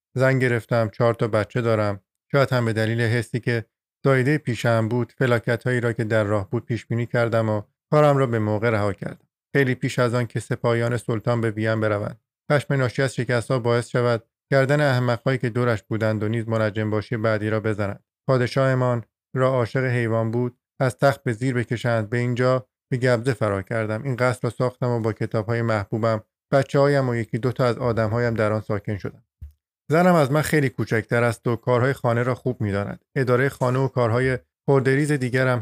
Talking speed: 190 wpm